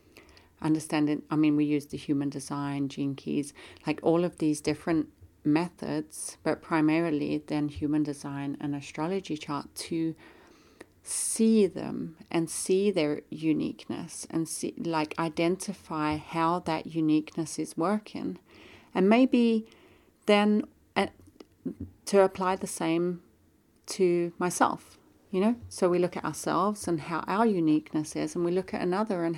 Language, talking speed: English, 135 wpm